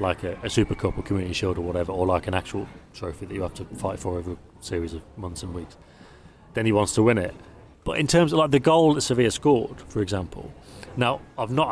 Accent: British